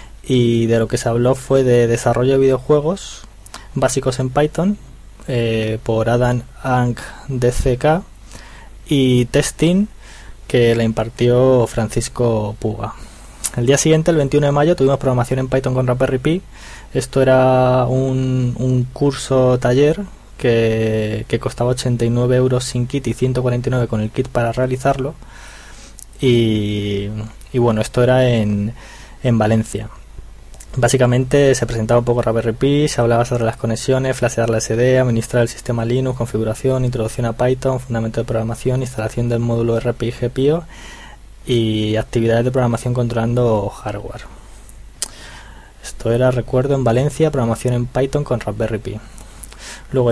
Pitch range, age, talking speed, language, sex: 115-130 Hz, 20-39, 140 wpm, Spanish, male